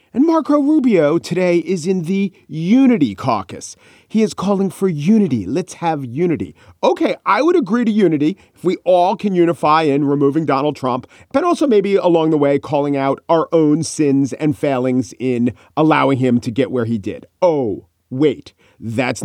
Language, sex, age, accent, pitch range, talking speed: English, male, 40-59, American, 135-185 Hz, 175 wpm